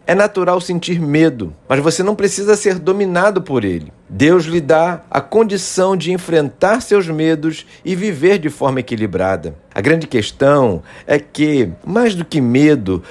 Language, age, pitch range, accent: Portuguese, 50-69, 130-180 Hz, Brazilian